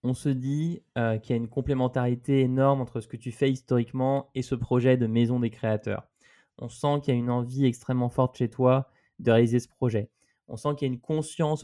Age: 20-39